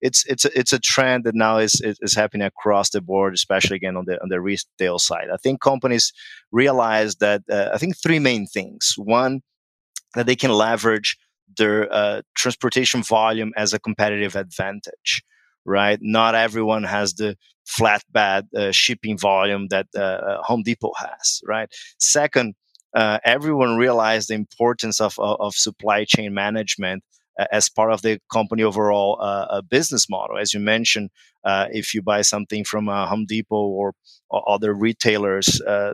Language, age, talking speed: English, 30-49, 170 wpm